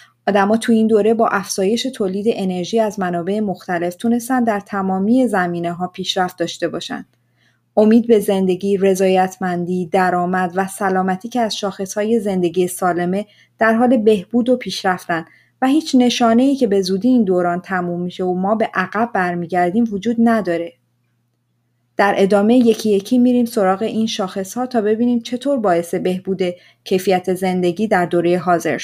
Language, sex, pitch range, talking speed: Persian, female, 180-225 Hz, 145 wpm